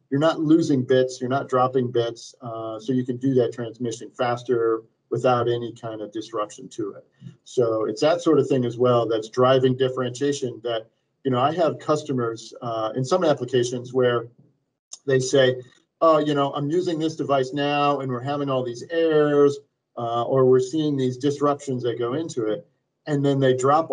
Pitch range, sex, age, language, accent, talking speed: 125-150 Hz, male, 40-59, English, American, 190 wpm